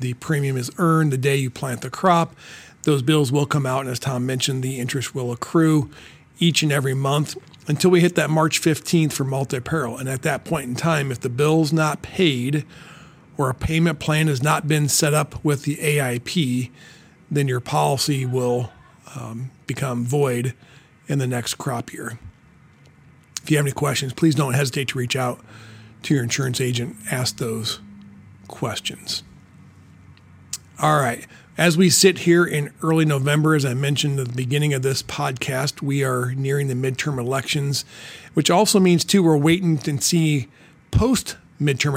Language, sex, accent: English, male, American